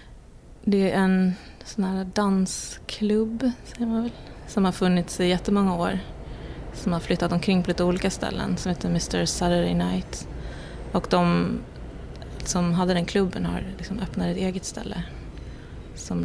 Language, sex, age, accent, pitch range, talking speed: English, female, 20-39, Swedish, 170-190 Hz, 150 wpm